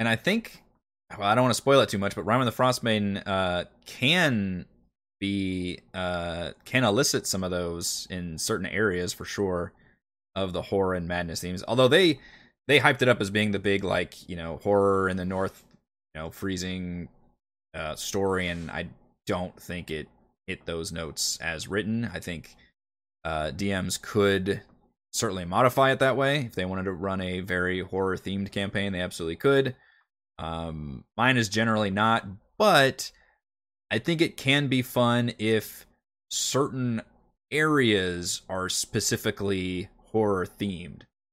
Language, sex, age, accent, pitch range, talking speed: English, male, 20-39, American, 90-115 Hz, 160 wpm